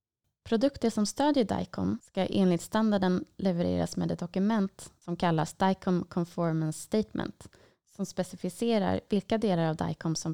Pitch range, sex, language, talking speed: 170-215 Hz, female, Swedish, 135 wpm